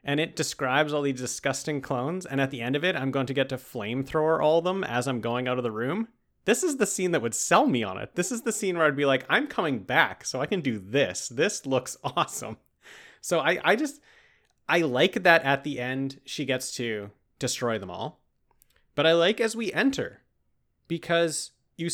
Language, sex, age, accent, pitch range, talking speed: English, male, 30-49, American, 135-170 Hz, 225 wpm